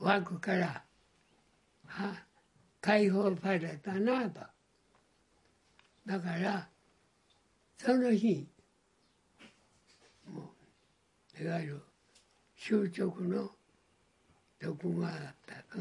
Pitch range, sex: 160-205 Hz, male